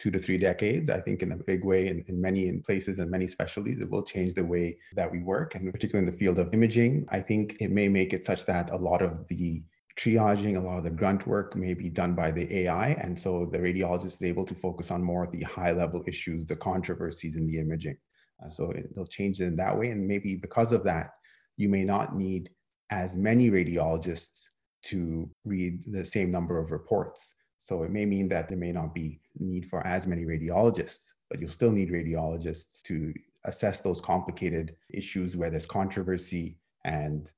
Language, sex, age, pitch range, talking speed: English, male, 30-49, 85-95 Hz, 215 wpm